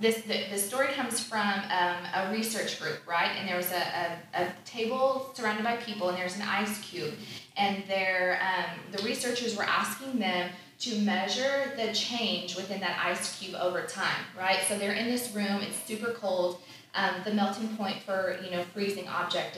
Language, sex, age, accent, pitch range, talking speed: English, female, 20-39, American, 180-215 Hz, 185 wpm